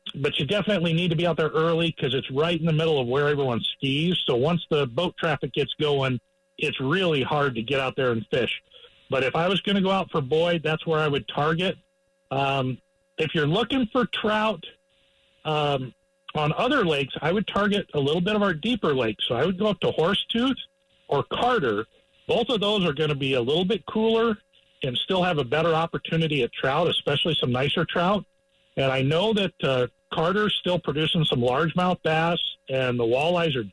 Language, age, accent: English, 50-69, American